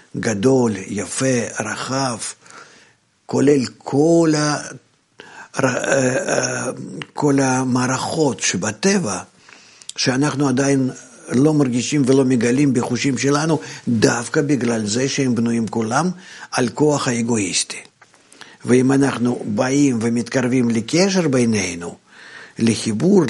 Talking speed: 85 wpm